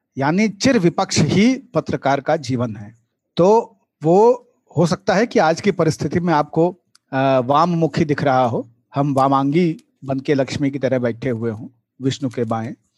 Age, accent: 40-59, native